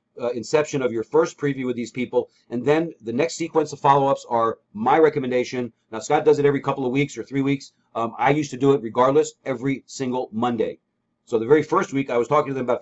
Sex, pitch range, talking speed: male, 120-150 Hz, 240 wpm